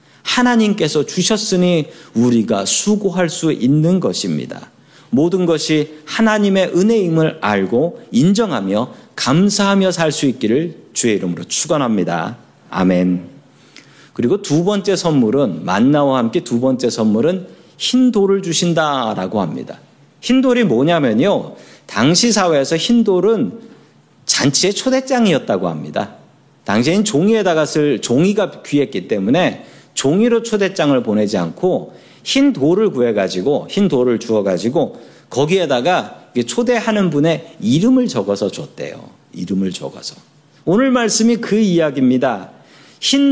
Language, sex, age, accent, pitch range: Korean, male, 40-59, native, 135-220 Hz